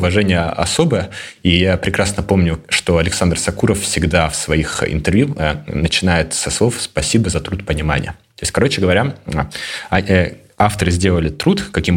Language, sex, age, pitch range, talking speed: Russian, male, 20-39, 80-100 Hz, 145 wpm